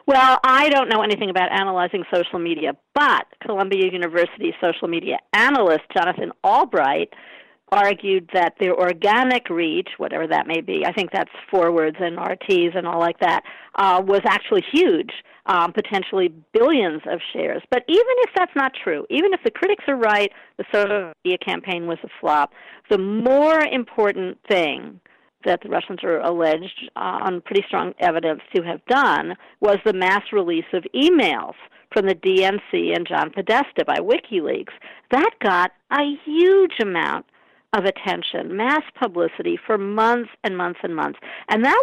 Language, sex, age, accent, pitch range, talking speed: English, female, 50-69, American, 180-270 Hz, 160 wpm